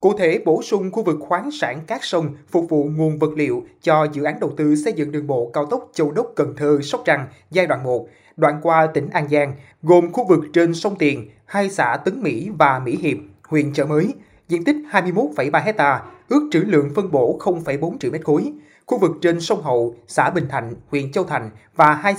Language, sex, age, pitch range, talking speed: Vietnamese, male, 20-39, 145-185 Hz, 215 wpm